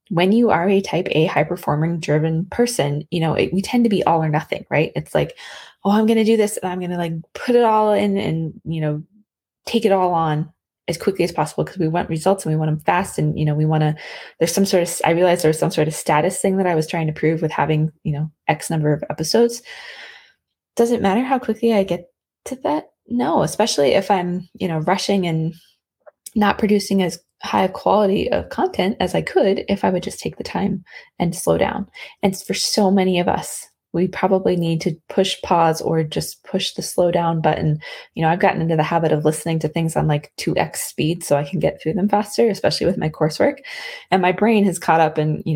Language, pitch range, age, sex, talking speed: English, 160-200 Hz, 20-39, female, 240 wpm